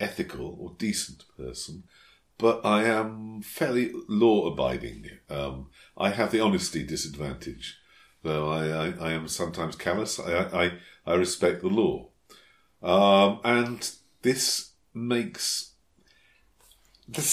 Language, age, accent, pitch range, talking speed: English, 50-69, British, 90-110 Hz, 115 wpm